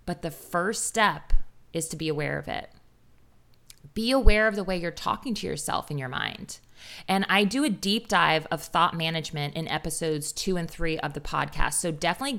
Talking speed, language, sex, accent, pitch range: 200 wpm, English, female, American, 160-215 Hz